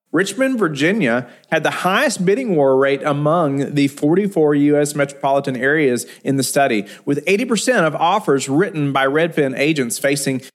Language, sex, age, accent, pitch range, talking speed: English, male, 30-49, American, 135-180 Hz, 150 wpm